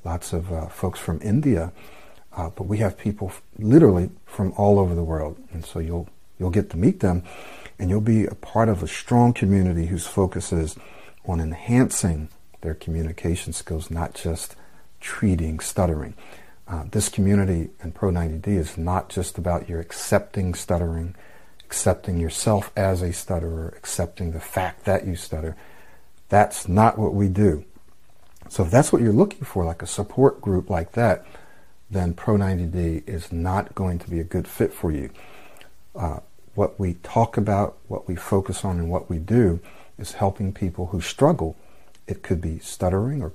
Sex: male